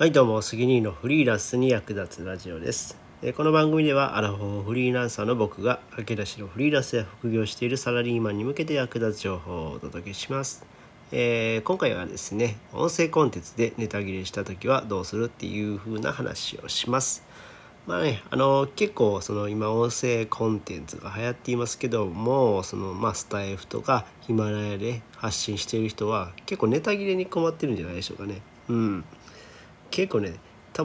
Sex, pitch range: male, 100-135 Hz